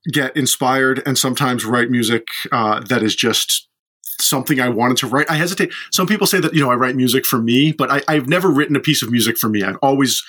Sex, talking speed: male, 240 wpm